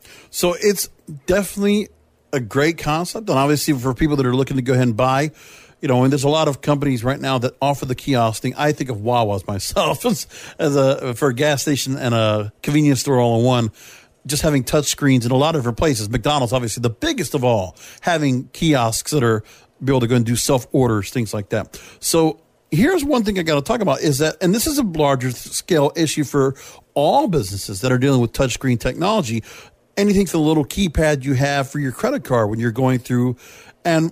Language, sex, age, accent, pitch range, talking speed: English, male, 50-69, American, 125-155 Hz, 220 wpm